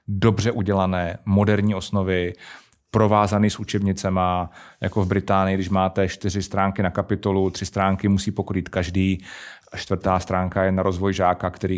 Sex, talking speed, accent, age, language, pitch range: male, 150 wpm, native, 30-49, Czech, 95-105 Hz